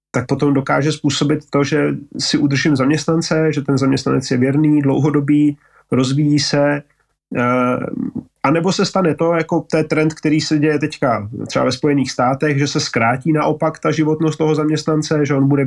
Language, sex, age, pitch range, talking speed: Slovak, male, 30-49, 130-150 Hz, 170 wpm